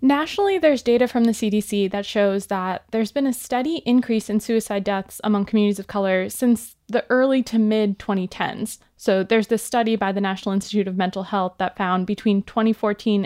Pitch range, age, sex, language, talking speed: 200-235 Hz, 20-39, female, English, 185 wpm